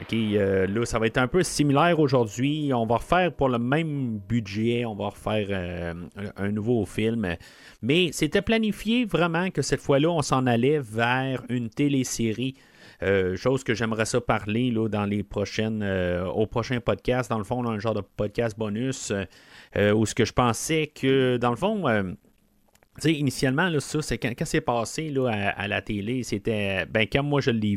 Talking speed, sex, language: 200 wpm, male, French